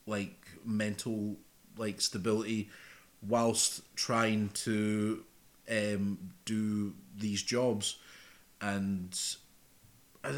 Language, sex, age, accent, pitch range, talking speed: English, male, 30-49, British, 100-115 Hz, 75 wpm